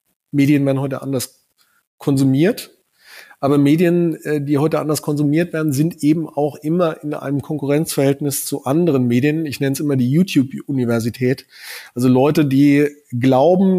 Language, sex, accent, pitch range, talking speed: German, male, German, 130-150 Hz, 140 wpm